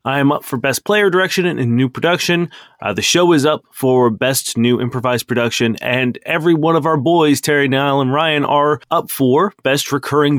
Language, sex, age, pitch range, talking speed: English, male, 30-49, 120-160 Hz, 210 wpm